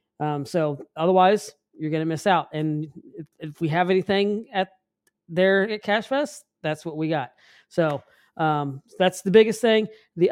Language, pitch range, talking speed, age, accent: English, 160-195 Hz, 165 wpm, 40-59, American